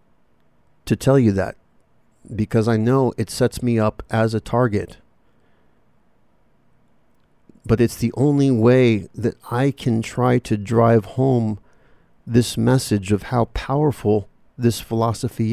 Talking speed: 130 wpm